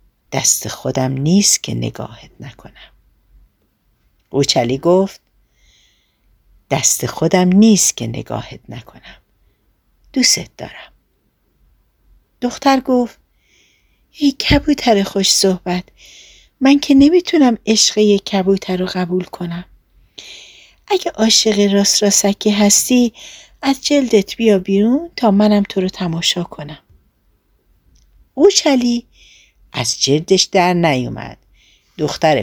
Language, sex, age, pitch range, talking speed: Persian, female, 60-79, 180-260 Hz, 95 wpm